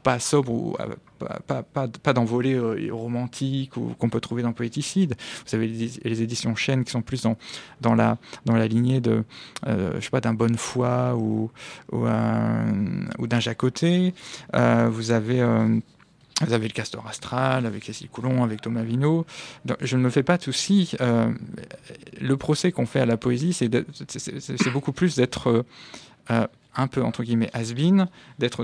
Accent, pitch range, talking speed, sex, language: French, 115-135 Hz, 195 wpm, male, French